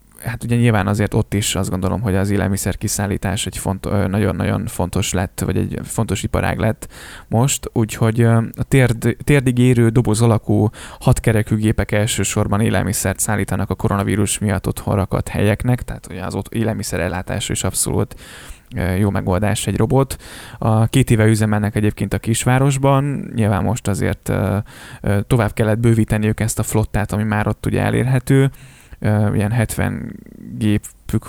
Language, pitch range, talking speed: Hungarian, 100-115 Hz, 140 wpm